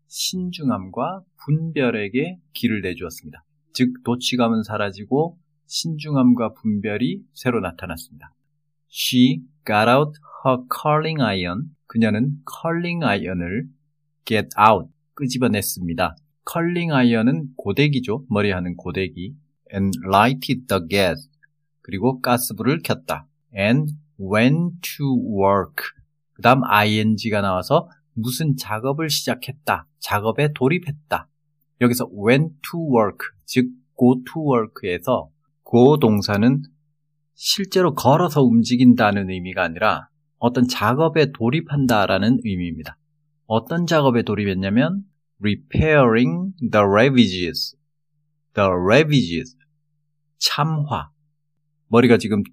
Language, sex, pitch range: Korean, male, 110-150 Hz